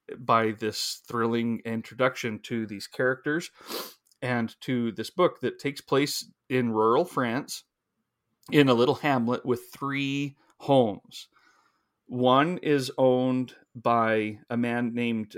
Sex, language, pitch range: male, English, 110-130 Hz